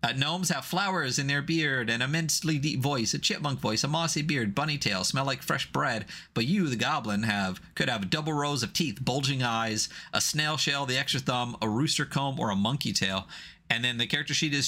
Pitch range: 105-150 Hz